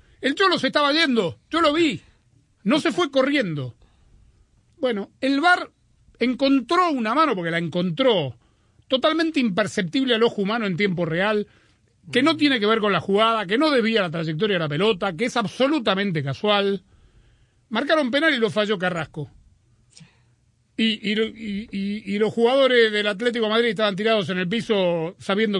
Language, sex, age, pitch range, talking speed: Spanish, male, 40-59, 160-265 Hz, 160 wpm